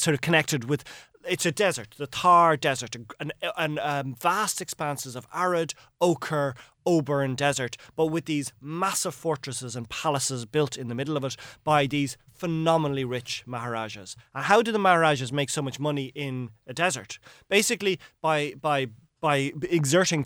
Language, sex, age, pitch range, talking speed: English, male, 30-49, 125-160 Hz, 165 wpm